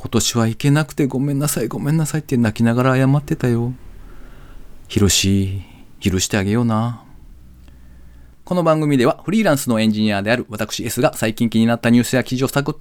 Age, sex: 40-59, male